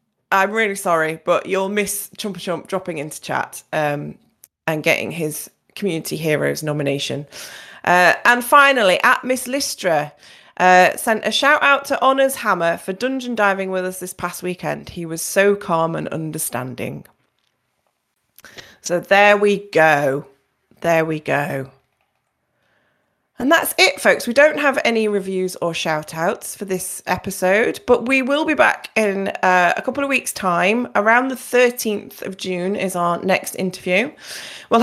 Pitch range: 175-245 Hz